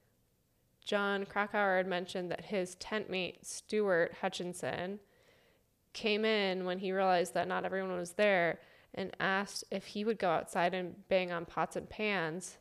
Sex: female